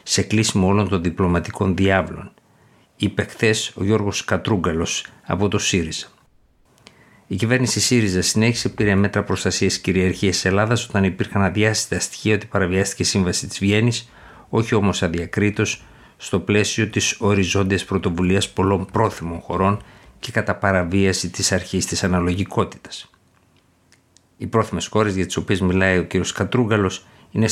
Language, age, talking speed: Greek, 50-69, 135 wpm